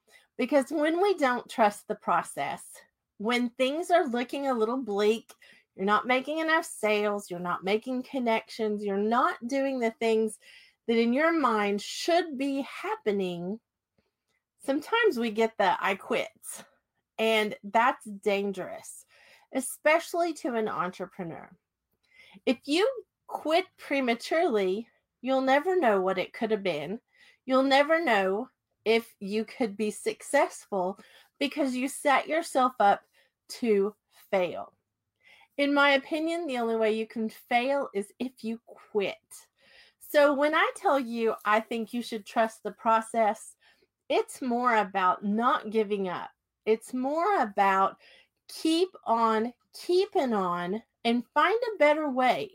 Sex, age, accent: female, 30-49, American